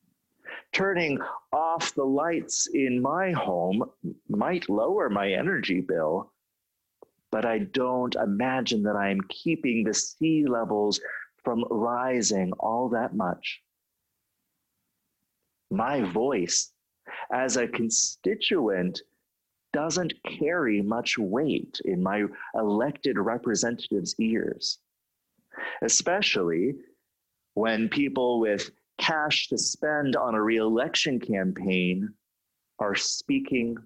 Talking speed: 95 wpm